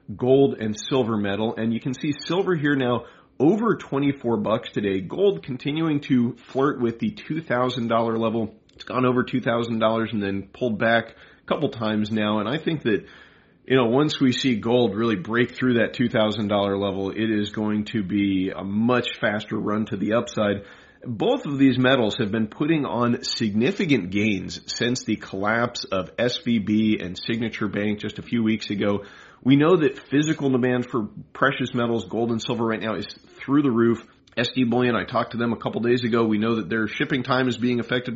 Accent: American